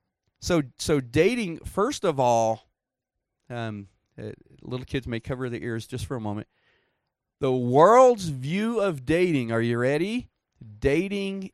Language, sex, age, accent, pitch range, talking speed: English, male, 40-59, American, 110-170 Hz, 140 wpm